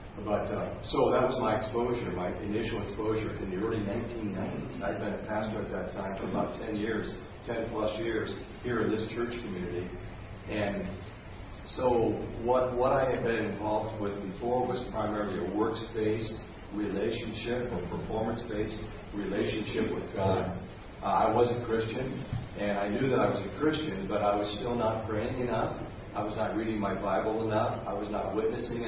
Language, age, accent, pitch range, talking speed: English, 50-69, American, 100-115 Hz, 175 wpm